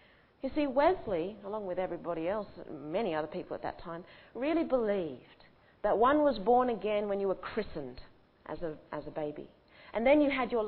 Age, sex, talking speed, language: 40-59, female, 190 wpm, English